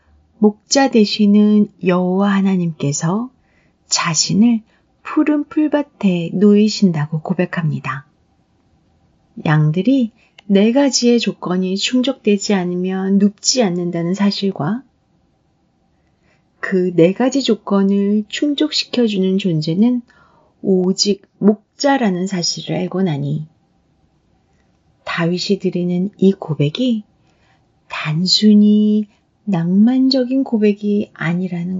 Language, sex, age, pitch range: Korean, female, 30-49, 175-235 Hz